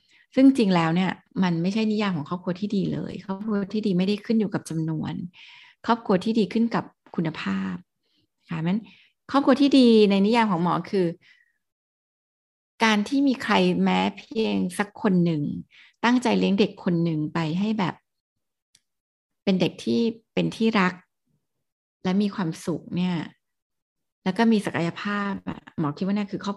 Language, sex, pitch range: Thai, female, 180-225 Hz